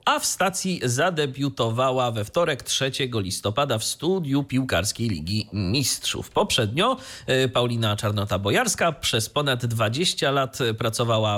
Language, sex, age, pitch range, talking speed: Polish, male, 30-49, 115-150 Hz, 110 wpm